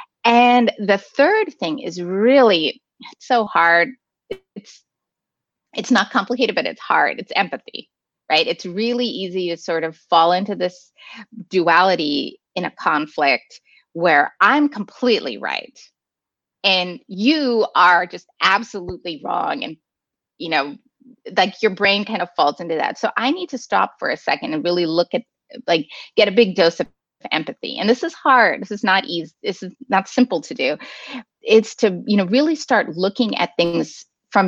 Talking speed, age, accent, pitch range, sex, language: 165 wpm, 30-49, American, 175-250 Hz, female, English